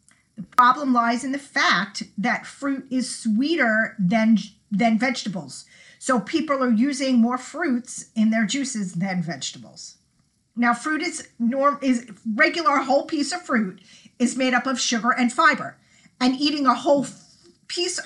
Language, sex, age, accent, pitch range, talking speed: English, female, 40-59, American, 220-280 Hz, 155 wpm